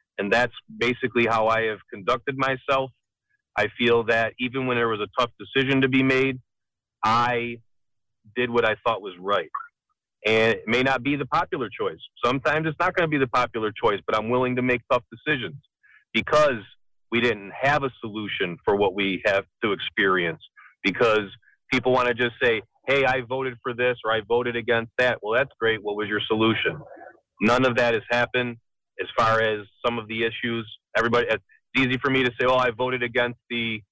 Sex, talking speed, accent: male, 195 wpm, American